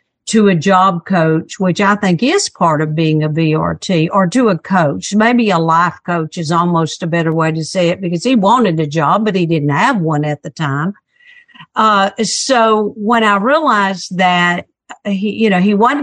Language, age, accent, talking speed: English, 50-69, American, 200 wpm